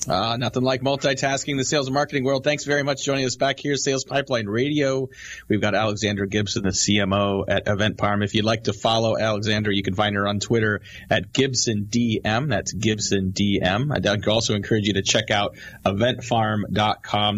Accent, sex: American, male